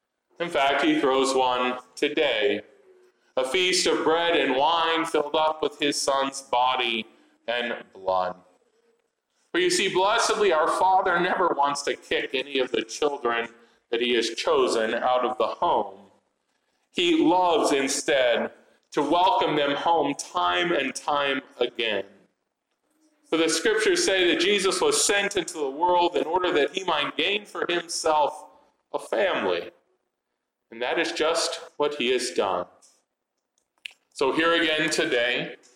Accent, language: American, English